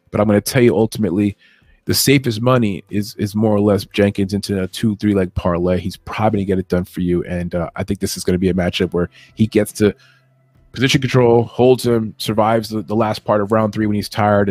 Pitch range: 100-120 Hz